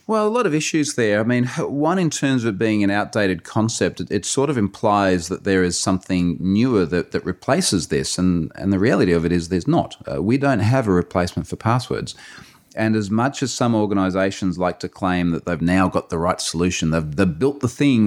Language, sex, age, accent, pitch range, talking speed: English, male, 30-49, Australian, 85-110 Hz, 230 wpm